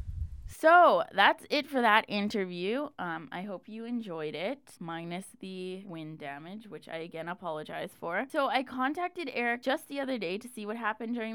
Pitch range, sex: 185-255 Hz, female